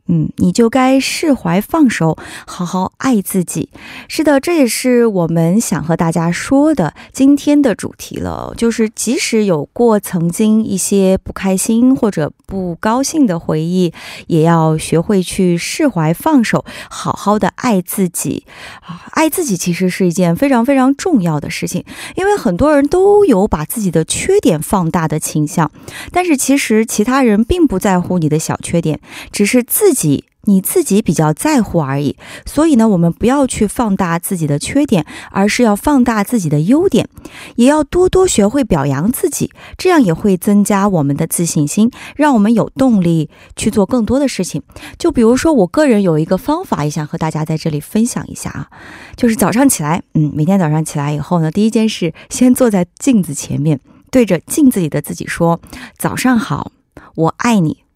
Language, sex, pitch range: Korean, female, 170-255 Hz